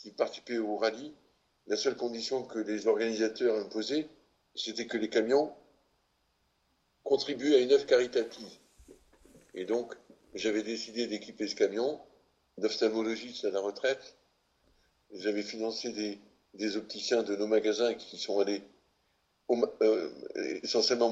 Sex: male